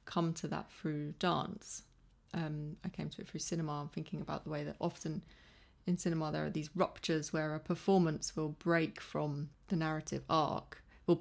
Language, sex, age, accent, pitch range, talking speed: English, female, 20-39, British, 155-175 Hz, 185 wpm